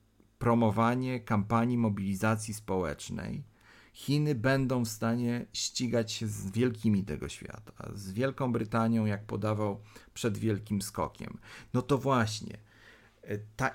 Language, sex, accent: Polish, male, native